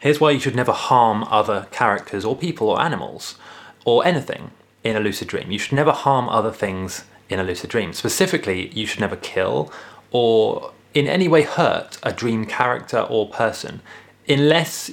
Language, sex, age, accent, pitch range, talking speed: English, male, 20-39, British, 105-140 Hz, 175 wpm